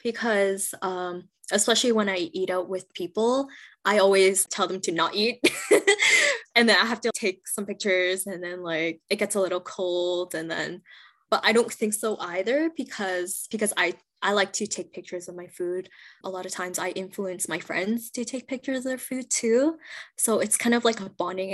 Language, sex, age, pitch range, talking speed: English, female, 10-29, 185-245 Hz, 205 wpm